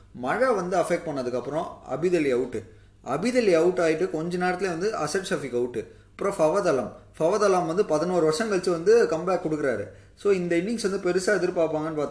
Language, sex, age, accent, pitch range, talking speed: Tamil, male, 20-39, native, 125-180 Hz, 165 wpm